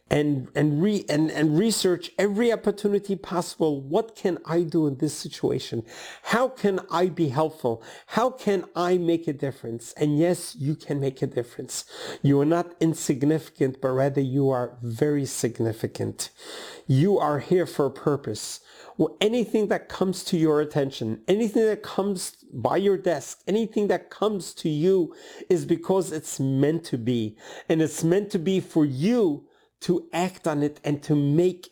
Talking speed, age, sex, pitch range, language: 165 wpm, 50-69, male, 140-185 Hz, English